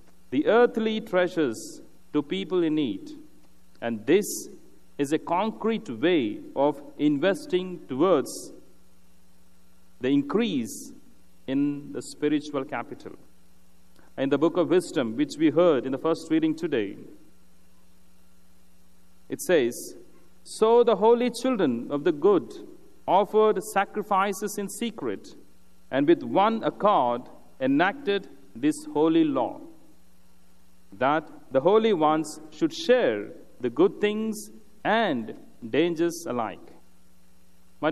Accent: Indian